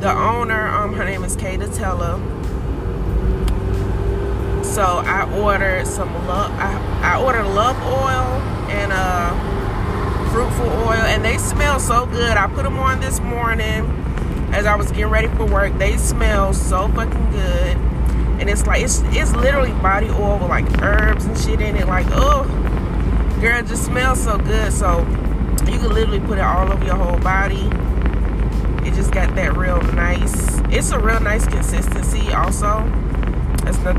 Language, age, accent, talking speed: English, 20-39, American, 160 wpm